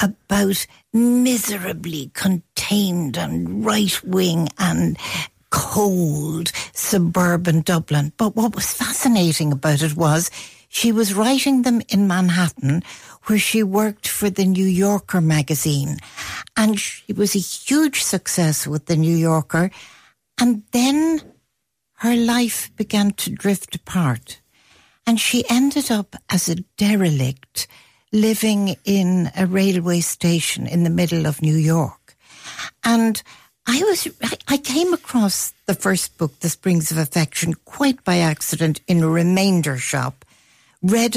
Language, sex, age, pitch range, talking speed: English, female, 60-79, 160-215 Hz, 130 wpm